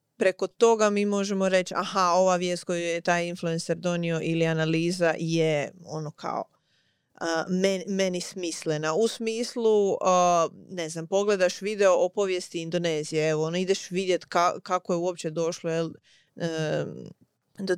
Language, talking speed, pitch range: Croatian, 150 wpm, 170-200 Hz